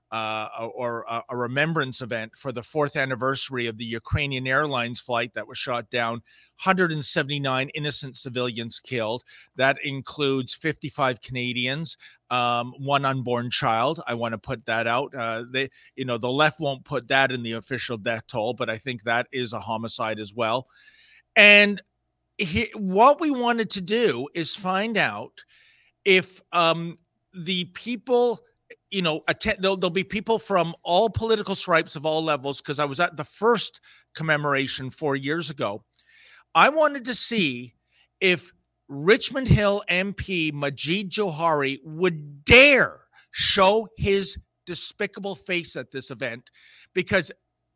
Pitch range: 125-190 Hz